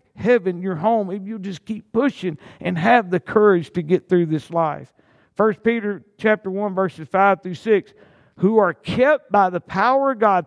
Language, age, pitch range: English, 50-69, 145-200 Hz